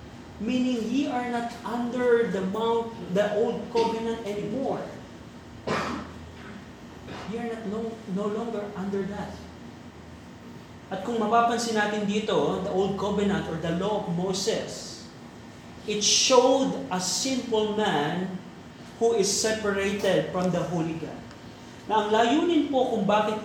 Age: 40-59